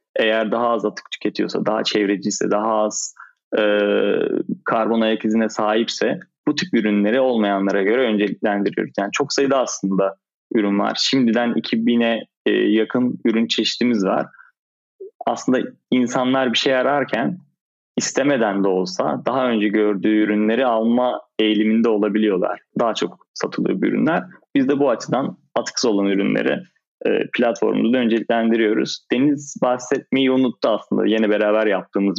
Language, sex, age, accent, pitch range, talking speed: Turkish, male, 30-49, native, 105-125 Hz, 125 wpm